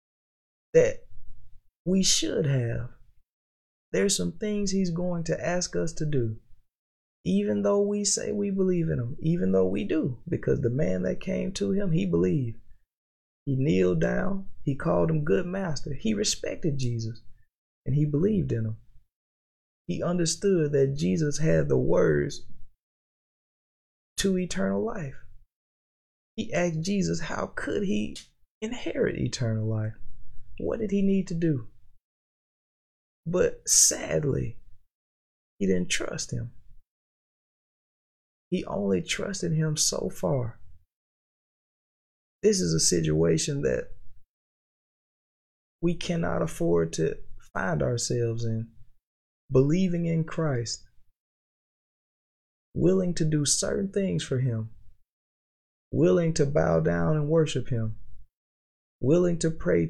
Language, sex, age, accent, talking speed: English, male, 20-39, American, 120 wpm